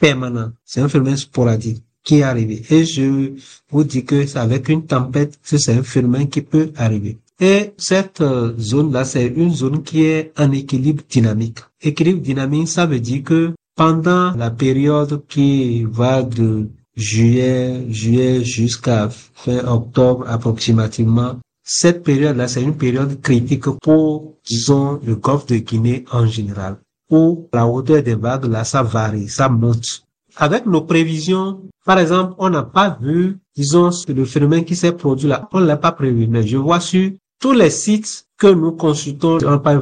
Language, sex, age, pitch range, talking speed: French, male, 50-69, 120-160 Hz, 165 wpm